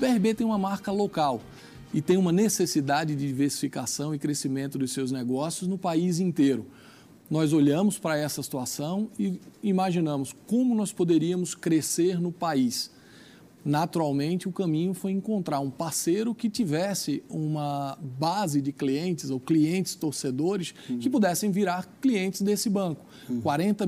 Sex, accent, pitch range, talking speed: male, Brazilian, 145-200 Hz, 140 wpm